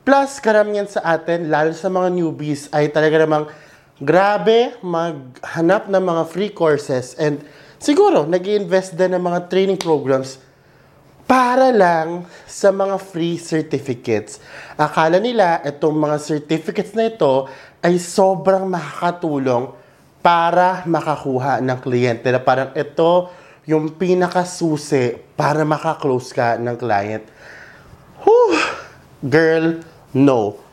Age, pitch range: 20-39, 145-180 Hz